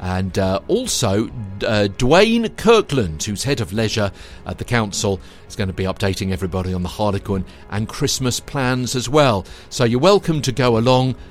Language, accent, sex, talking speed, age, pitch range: English, British, male, 175 wpm, 50-69, 95-140 Hz